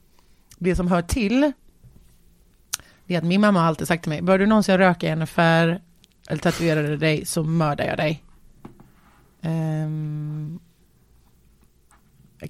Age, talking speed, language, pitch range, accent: 30-49, 135 wpm, Swedish, 165-205 Hz, native